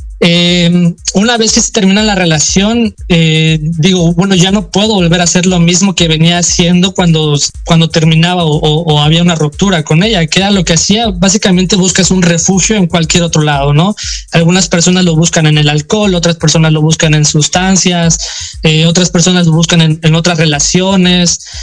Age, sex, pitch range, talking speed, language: 20-39, male, 165-195 Hz, 190 wpm, Spanish